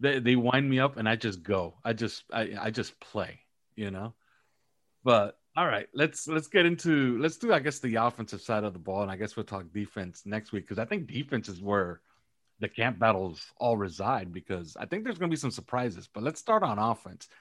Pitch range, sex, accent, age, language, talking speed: 105-130 Hz, male, American, 30-49, English, 230 wpm